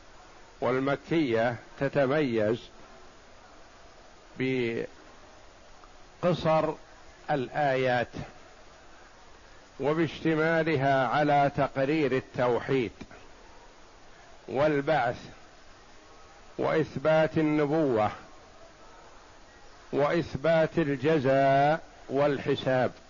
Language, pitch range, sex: Arabic, 130-160 Hz, male